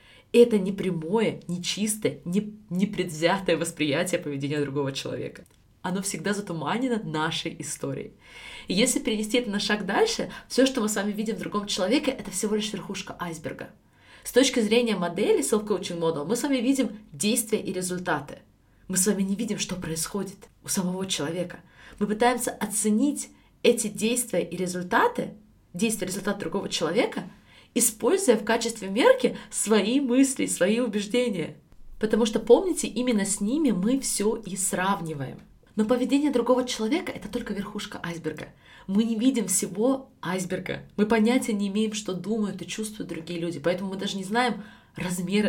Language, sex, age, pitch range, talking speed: Russian, female, 20-39, 185-240 Hz, 155 wpm